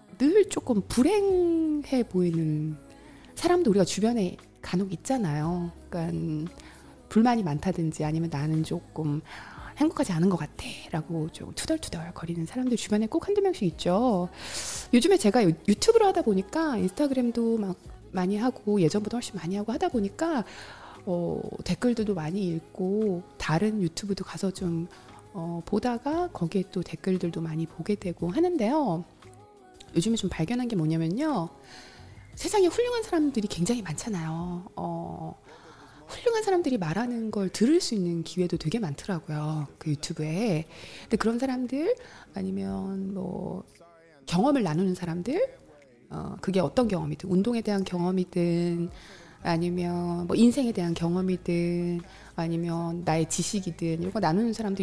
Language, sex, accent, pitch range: Korean, female, native, 165-230 Hz